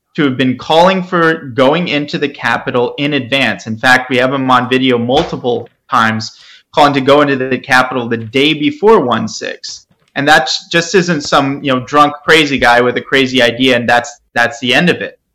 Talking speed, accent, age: 205 wpm, American, 30-49